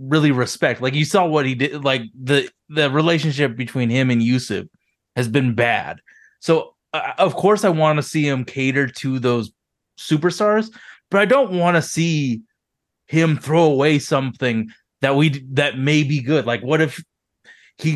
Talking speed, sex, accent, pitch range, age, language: 175 wpm, male, American, 130-165 Hz, 20-39, English